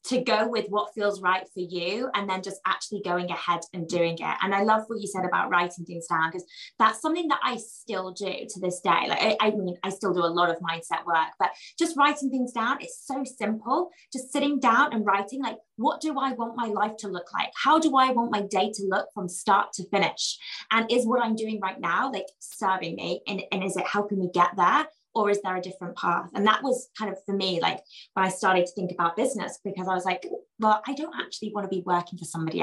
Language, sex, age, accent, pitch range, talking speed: English, female, 20-39, British, 185-255 Hz, 250 wpm